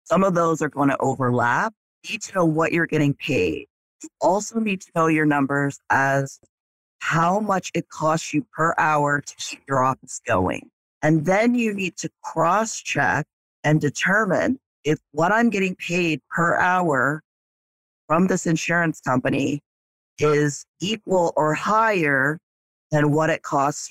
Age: 40-59